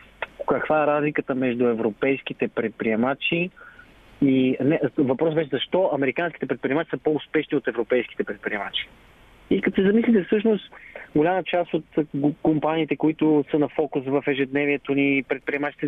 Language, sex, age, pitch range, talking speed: Bulgarian, male, 30-49, 140-210 Hz, 130 wpm